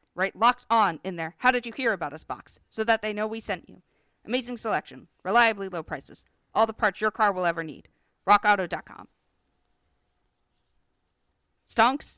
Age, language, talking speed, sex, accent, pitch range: 40-59, English, 170 wpm, female, American, 200-240 Hz